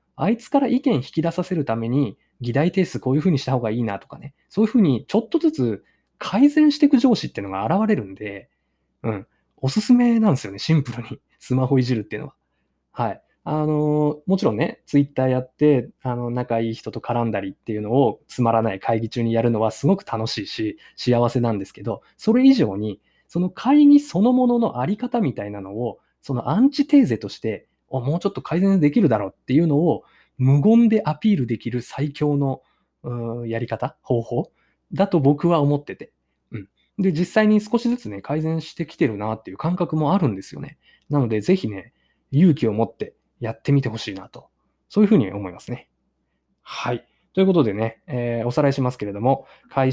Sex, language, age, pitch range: male, Japanese, 20-39, 115-180 Hz